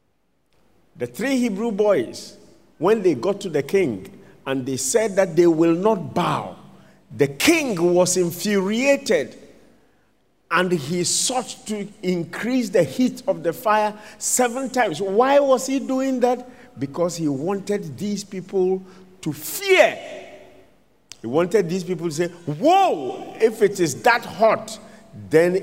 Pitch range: 165-230 Hz